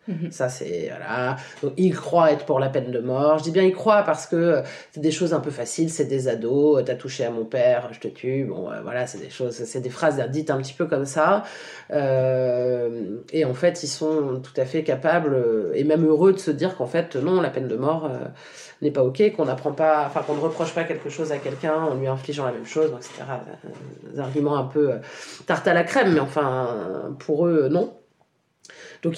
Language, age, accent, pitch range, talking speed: French, 30-49, French, 135-165 Hz, 240 wpm